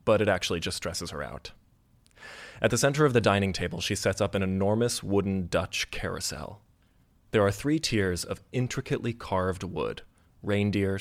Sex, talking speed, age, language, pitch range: male, 170 wpm, 20-39, English, 95-115 Hz